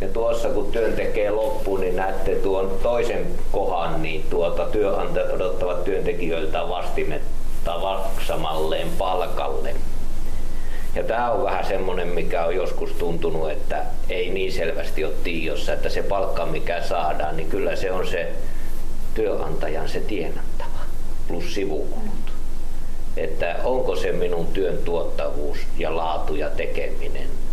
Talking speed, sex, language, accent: 125 wpm, male, Finnish, native